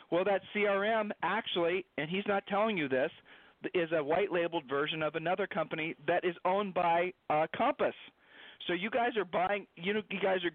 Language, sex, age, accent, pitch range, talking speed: English, male, 40-59, American, 150-200 Hz, 195 wpm